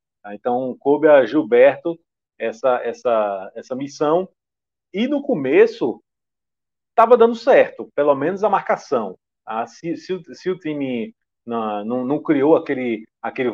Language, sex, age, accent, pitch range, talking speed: Portuguese, male, 40-59, Brazilian, 120-175 Hz, 130 wpm